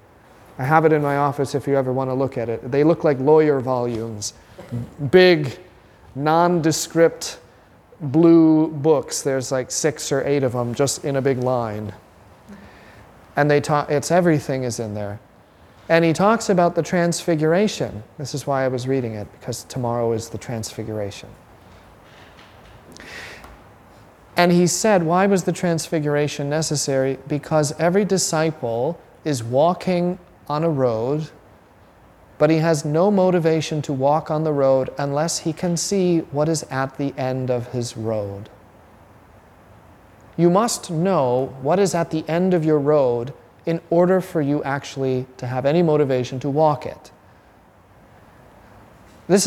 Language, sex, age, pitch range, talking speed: English, male, 40-59, 115-165 Hz, 150 wpm